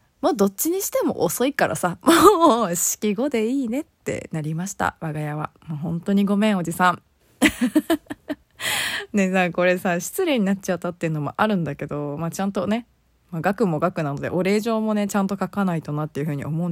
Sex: female